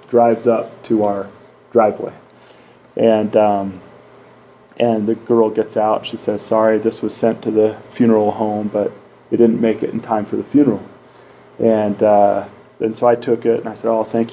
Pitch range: 110-120 Hz